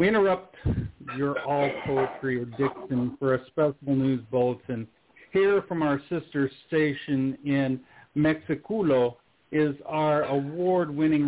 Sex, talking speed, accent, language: male, 115 wpm, American, English